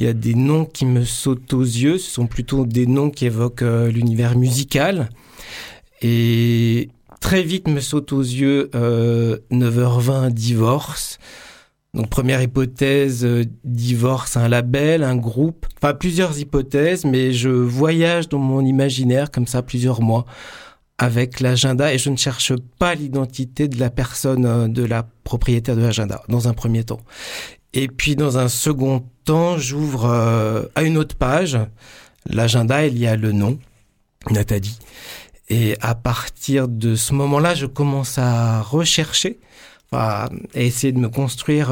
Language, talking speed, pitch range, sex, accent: French, 150 wpm, 115-140 Hz, male, French